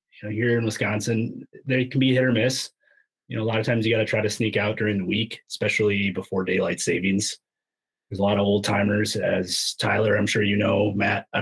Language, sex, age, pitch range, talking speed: English, male, 30-49, 100-125 Hz, 235 wpm